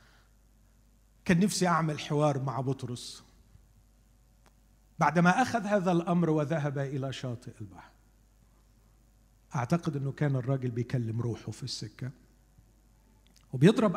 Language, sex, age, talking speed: Arabic, male, 50-69, 100 wpm